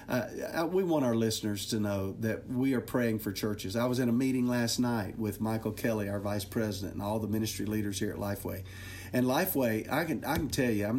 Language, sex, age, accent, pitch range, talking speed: English, male, 50-69, American, 100-120 Hz, 235 wpm